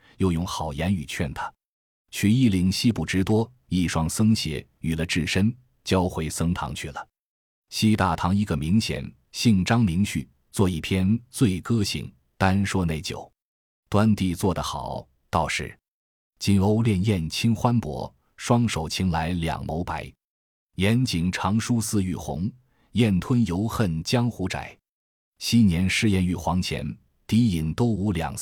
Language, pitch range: Chinese, 80-110 Hz